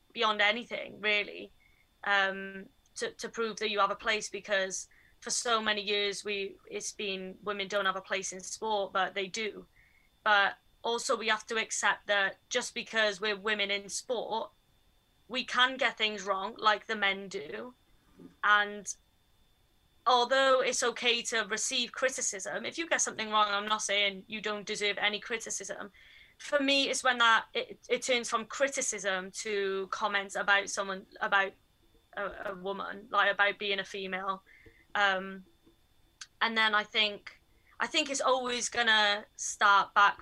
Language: English